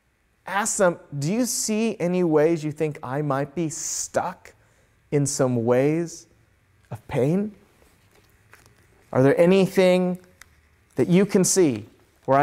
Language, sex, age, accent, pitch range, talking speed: English, male, 30-49, American, 130-200 Hz, 125 wpm